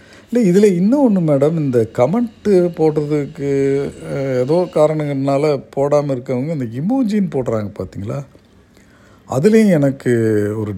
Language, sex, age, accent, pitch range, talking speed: Tamil, male, 50-69, native, 110-165 Hz, 100 wpm